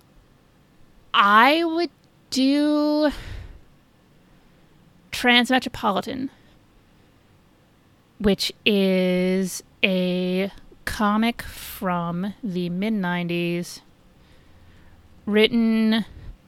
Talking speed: 45 wpm